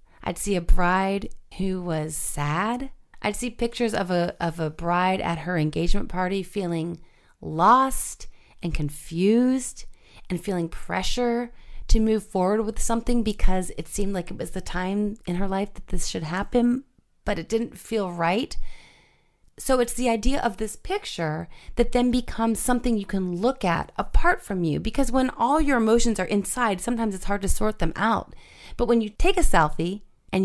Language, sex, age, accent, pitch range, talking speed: English, female, 30-49, American, 170-230 Hz, 175 wpm